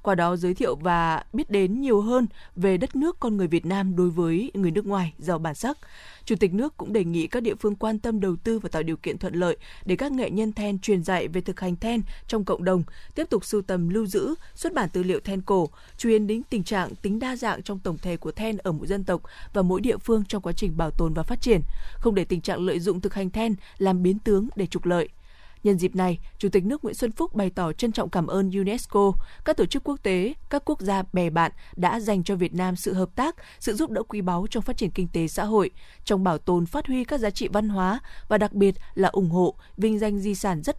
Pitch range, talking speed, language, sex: 180-220 Hz, 265 wpm, Vietnamese, female